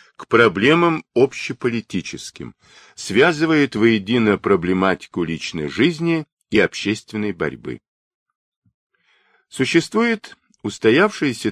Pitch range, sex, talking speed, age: 95-155 Hz, male, 70 wpm, 50-69